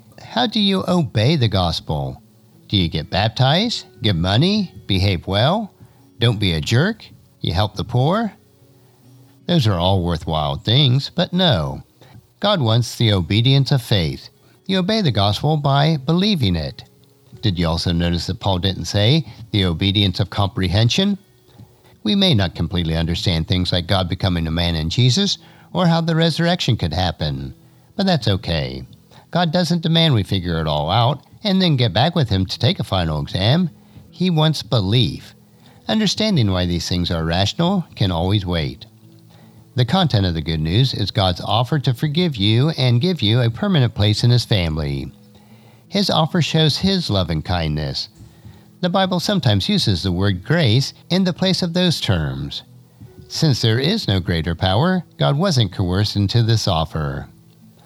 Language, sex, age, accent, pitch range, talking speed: English, male, 50-69, American, 95-155 Hz, 165 wpm